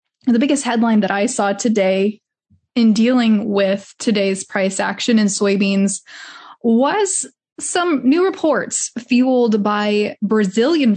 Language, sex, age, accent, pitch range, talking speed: English, female, 20-39, American, 210-255 Hz, 120 wpm